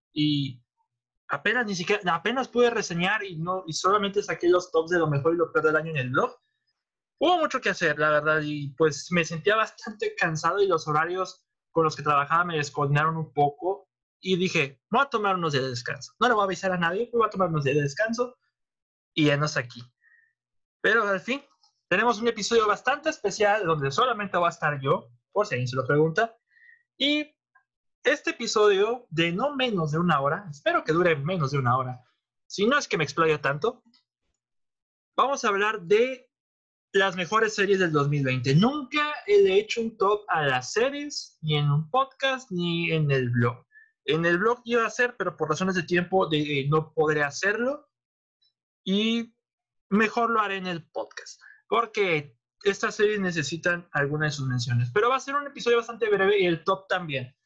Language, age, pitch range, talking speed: Spanish, 20-39, 155-230 Hz, 195 wpm